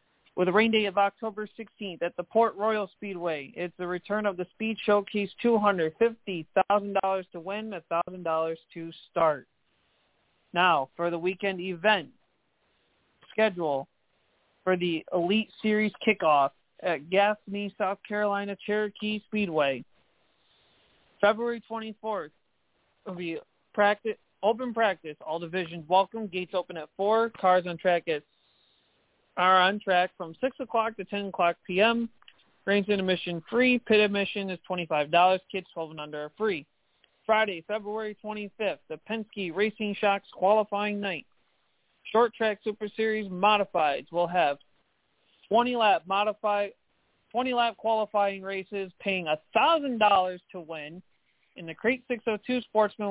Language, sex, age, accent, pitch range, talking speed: English, male, 40-59, American, 175-215 Hz, 130 wpm